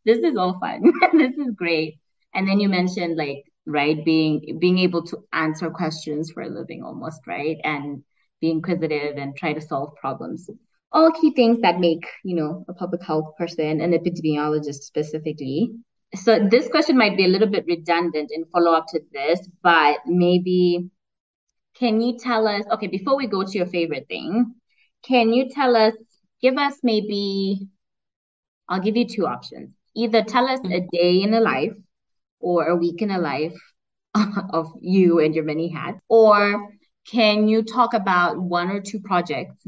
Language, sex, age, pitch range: English, female, 20-39, 160-210 Hz